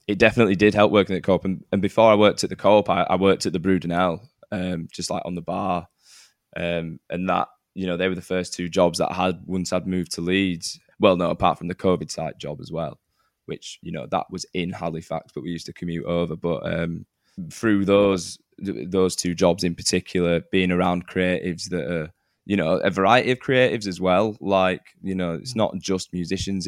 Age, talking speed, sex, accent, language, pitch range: 10-29, 225 wpm, male, British, English, 85-95 Hz